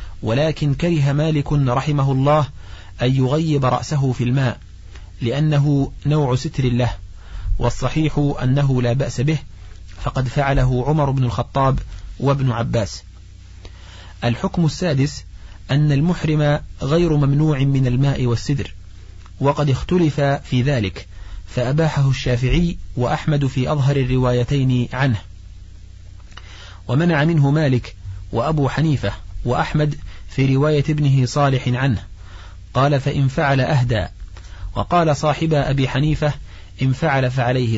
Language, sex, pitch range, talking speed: Arabic, male, 95-145 Hz, 110 wpm